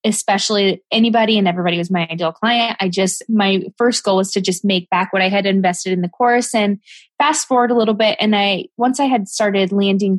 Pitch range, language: 190-225 Hz, English